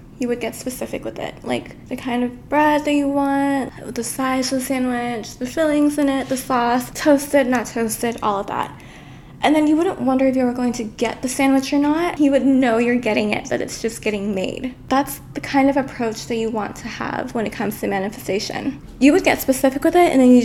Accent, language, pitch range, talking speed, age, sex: American, English, 225-270 Hz, 240 wpm, 20-39, female